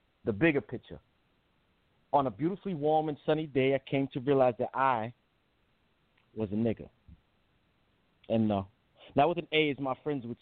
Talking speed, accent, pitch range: 175 wpm, American, 120-145 Hz